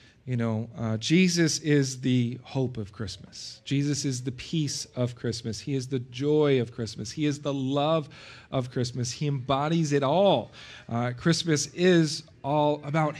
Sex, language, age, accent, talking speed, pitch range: male, English, 40-59, American, 165 wpm, 135-175 Hz